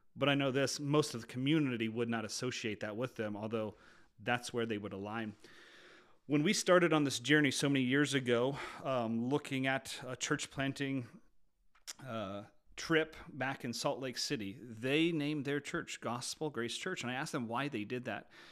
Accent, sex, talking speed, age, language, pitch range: American, male, 190 wpm, 40-59, English, 120-145 Hz